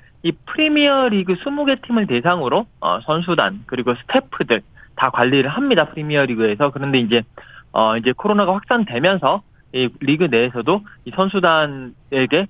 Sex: male